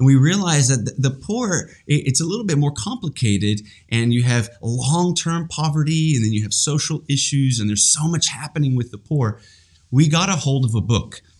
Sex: male